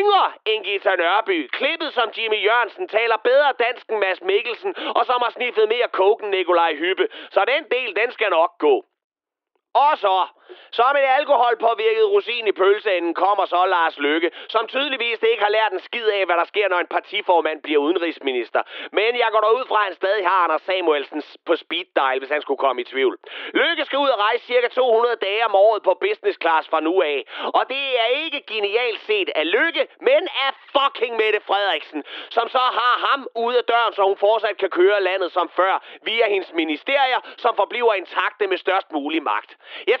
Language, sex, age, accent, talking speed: Danish, male, 30-49, native, 200 wpm